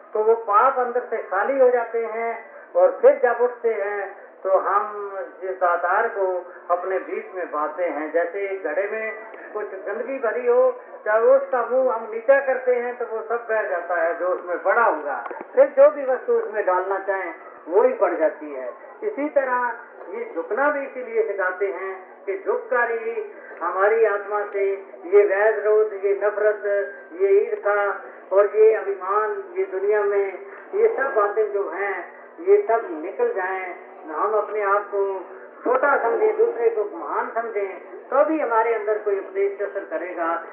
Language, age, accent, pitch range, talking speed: Hindi, 40-59, native, 200-280 Hz, 165 wpm